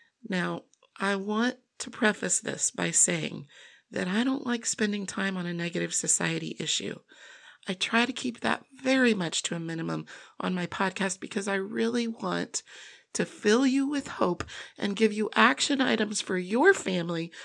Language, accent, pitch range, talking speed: English, American, 185-255 Hz, 170 wpm